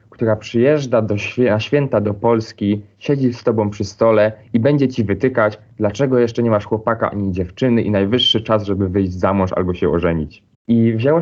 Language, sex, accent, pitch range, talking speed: Polish, male, native, 100-120 Hz, 195 wpm